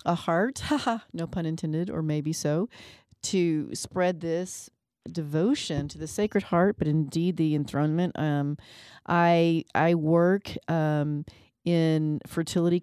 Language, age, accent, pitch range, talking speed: English, 40-59, American, 155-180 Hz, 125 wpm